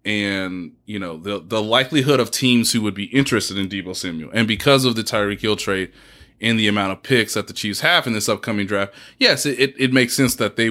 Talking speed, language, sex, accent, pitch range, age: 240 wpm, English, male, American, 105-140 Hz, 20-39